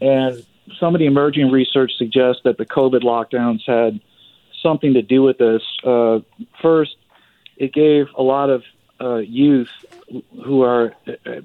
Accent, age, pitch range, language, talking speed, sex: American, 40-59, 120-140 Hz, English, 150 wpm, male